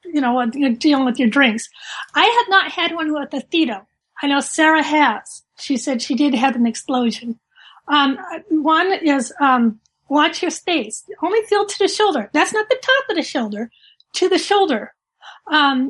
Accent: American